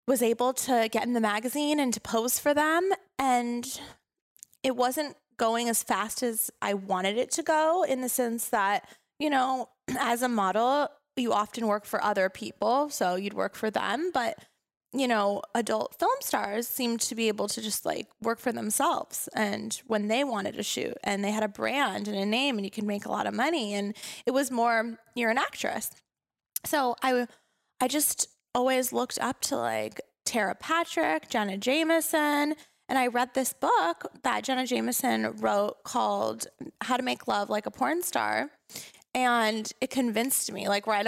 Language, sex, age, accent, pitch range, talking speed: English, female, 20-39, American, 215-265 Hz, 185 wpm